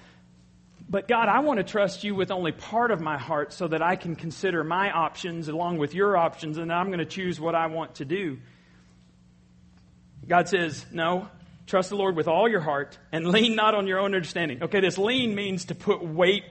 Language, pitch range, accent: English, 160-230 Hz, American